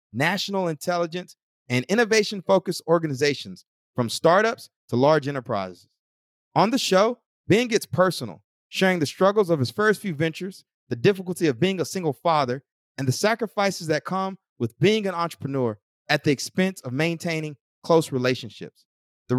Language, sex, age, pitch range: English, male, 30-49, 140-200 Hz